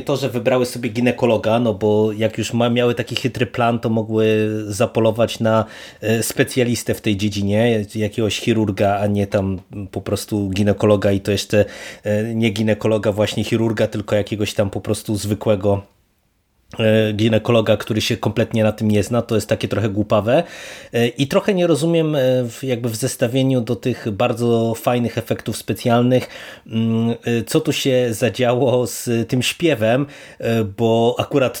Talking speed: 145 wpm